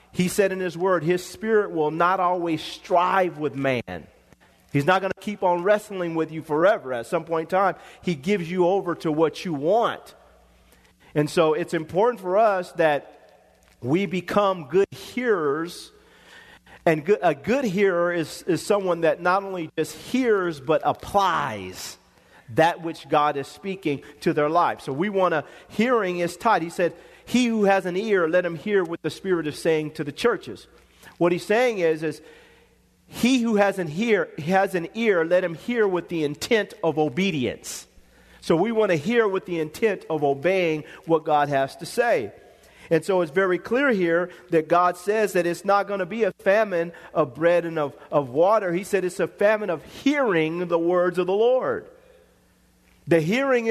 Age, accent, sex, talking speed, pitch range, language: 40-59, American, male, 185 wpm, 160-200 Hz, English